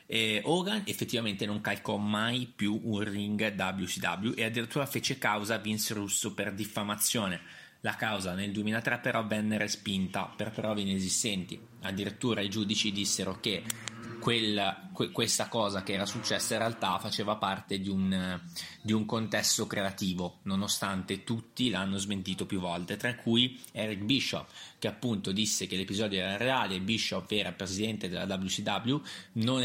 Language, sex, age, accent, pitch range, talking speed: Italian, male, 20-39, native, 100-115 Hz, 150 wpm